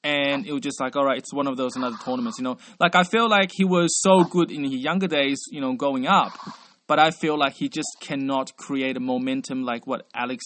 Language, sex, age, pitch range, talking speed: English, male, 20-39, 140-230 Hz, 250 wpm